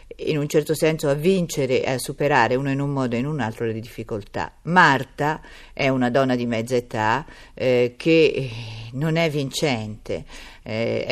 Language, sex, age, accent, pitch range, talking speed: Italian, female, 50-69, native, 120-150 Hz, 165 wpm